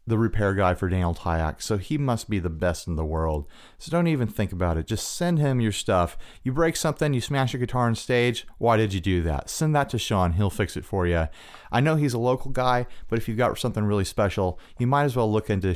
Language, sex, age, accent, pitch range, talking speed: English, male, 30-49, American, 90-125 Hz, 260 wpm